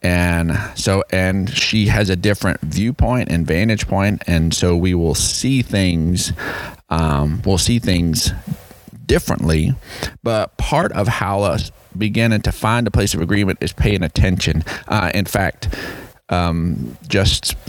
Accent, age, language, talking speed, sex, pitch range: American, 30-49, English, 140 wpm, male, 80-105 Hz